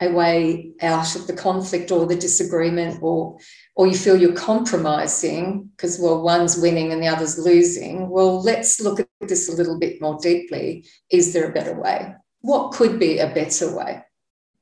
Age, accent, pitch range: 40-59, Australian, 170-210 Hz